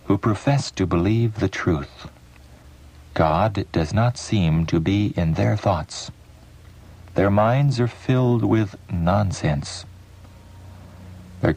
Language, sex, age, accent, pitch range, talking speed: English, male, 60-79, American, 75-105 Hz, 115 wpm